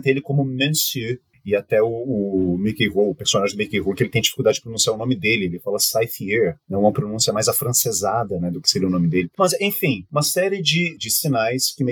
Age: 30-49